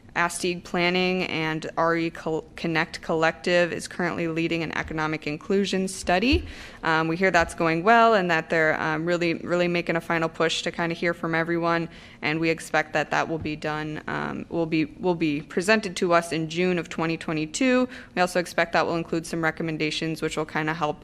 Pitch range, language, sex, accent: 160-185 Hz, English, female, American